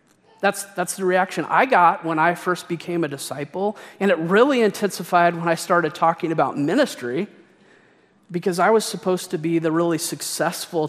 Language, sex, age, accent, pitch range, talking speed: English, male, 30-49, American, 165-210 Hz, 170 wpm